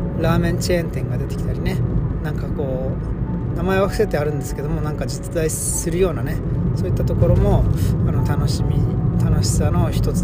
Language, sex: Japanese, male